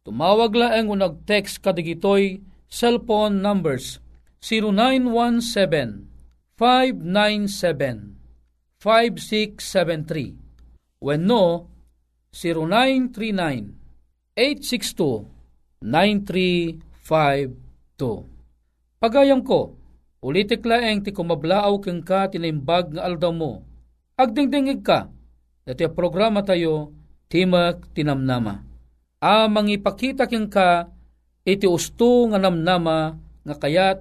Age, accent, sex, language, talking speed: 50-69, native, male, Filipino, 70 wpm